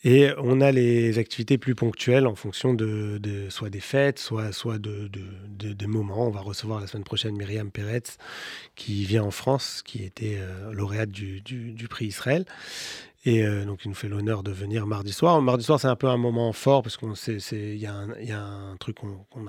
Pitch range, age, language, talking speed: 105-125 Hz, 30-49, French, 220 wpm